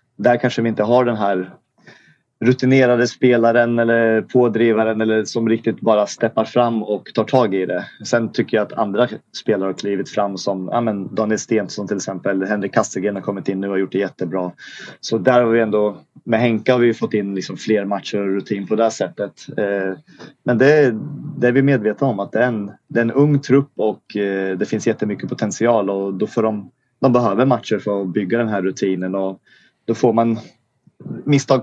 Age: 30-49